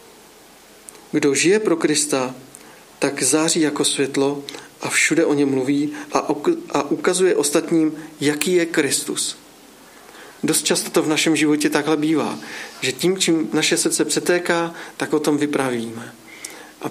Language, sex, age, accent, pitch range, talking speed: Czech, male, 40-59, native, 145-165 Hz, 135 wpm